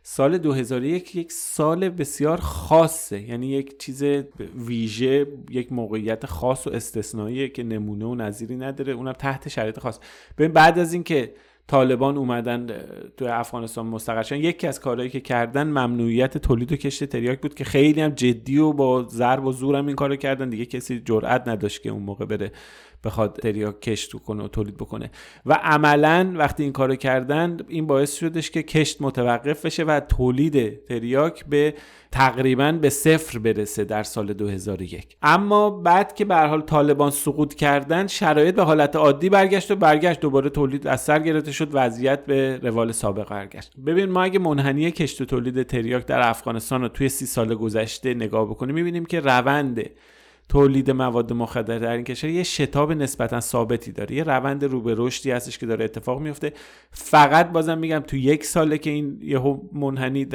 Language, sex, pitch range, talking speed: Persian, male, 120-150 Hz, 170 wpm